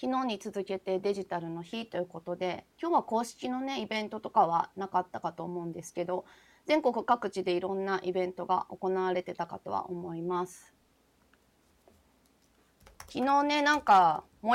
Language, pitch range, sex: Japanese, 180-235 Hz, female